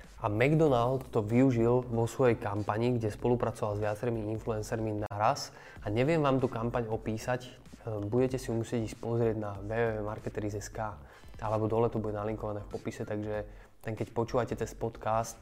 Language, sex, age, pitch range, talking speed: Slovak, male, 20-39, 105-120 Hz, 150 wpm